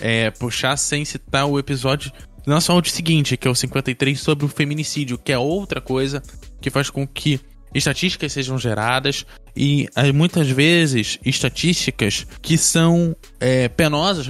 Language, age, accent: Portuguese, 20-39, Brazilian